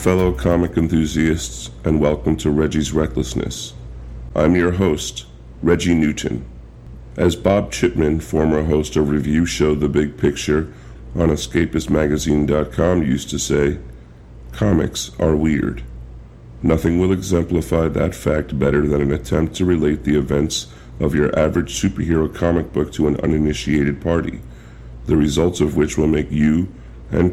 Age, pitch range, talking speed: 50-69, 70-85 Hz, 140 wpm